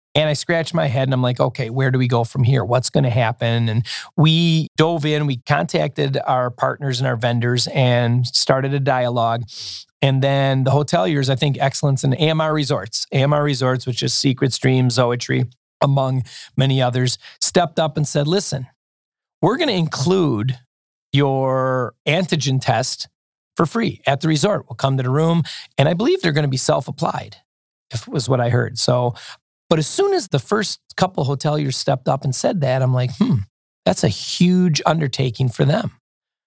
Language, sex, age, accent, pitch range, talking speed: English, male, 40-59, American, 130-155 Hz, 185 wpm